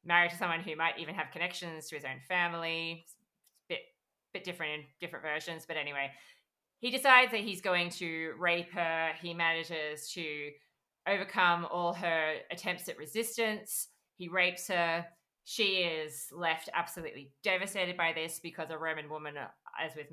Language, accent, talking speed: English, Australian, 160 wpm